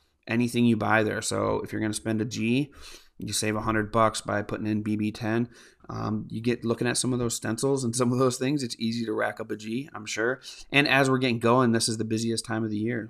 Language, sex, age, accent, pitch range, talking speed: English, male, 30-49, American, 110-125 Hz, 255 wpm